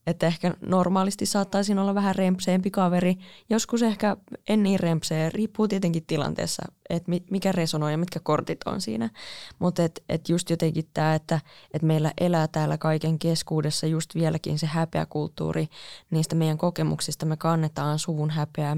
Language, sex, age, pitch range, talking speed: Finnish, female, 20-39, 155-180 Hz, 160 wpm